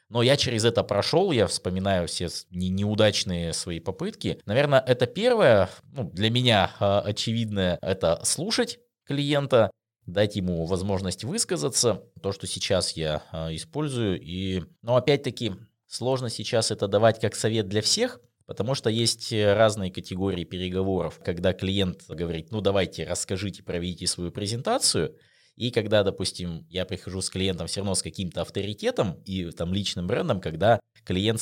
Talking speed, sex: 140 wpm, male